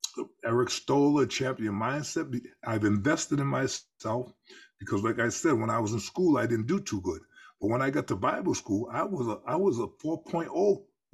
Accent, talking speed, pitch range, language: American, 195 wpm, 115-155 Hz, English